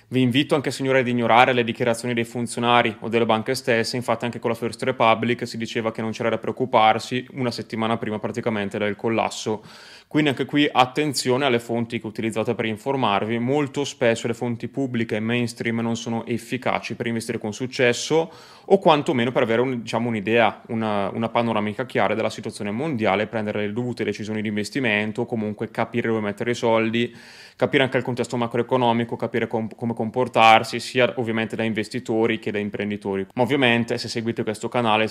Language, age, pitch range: Italian, 20-39, 110-125 Hz